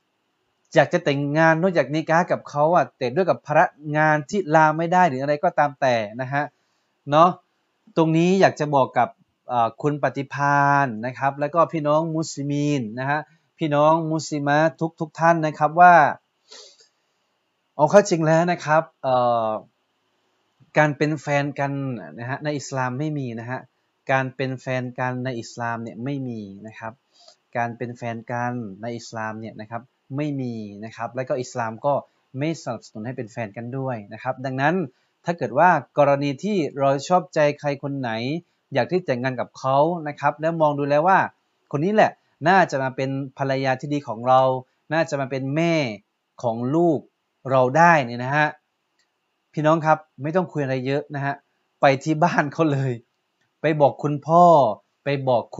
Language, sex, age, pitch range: Thai, male, 20-39, 130-155 Hz